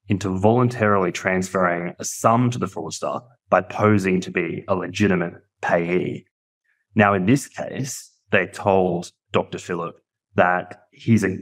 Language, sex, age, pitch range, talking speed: English, male, 20-39, 90-110 Hz, 130 wpm